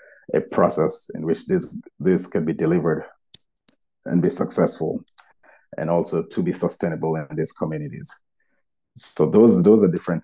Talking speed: 145 wpm